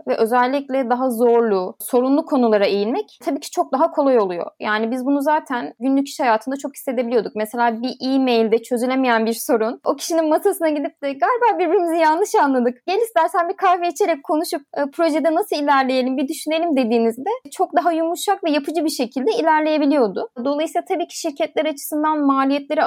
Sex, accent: female, native